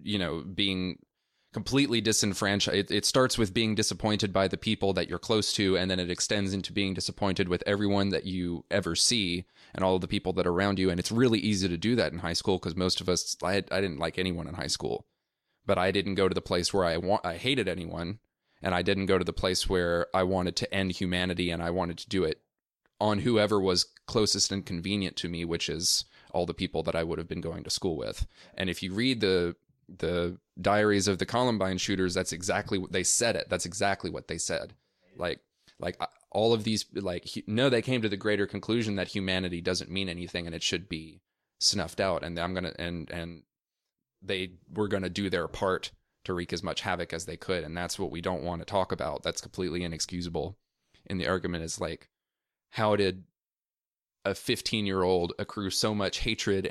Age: 20-39